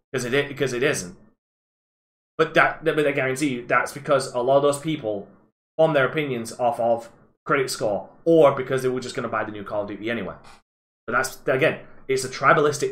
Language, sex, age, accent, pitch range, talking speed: English, male, 20-39, British, 155-205 Hz, 215 wpm